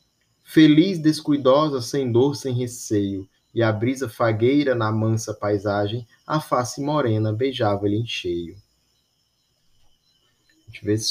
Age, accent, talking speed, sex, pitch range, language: 20-39, Brazilian, 125 wpm, male, 100-130 Hz, Portuguese